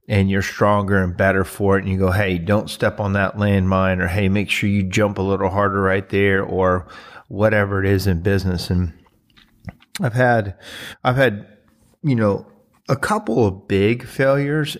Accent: American